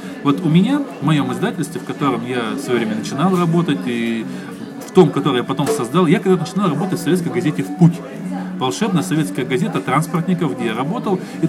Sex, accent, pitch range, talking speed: male, native, 140-180 Hz, 200 wpm